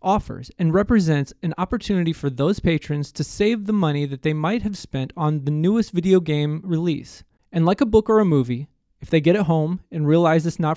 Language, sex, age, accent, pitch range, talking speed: English, male, 20-39, American, 140-185 Hz, 215 wpm